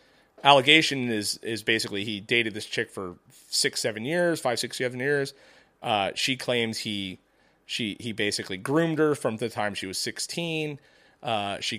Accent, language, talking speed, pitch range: American, English, 170 wpm, 110-145 Hz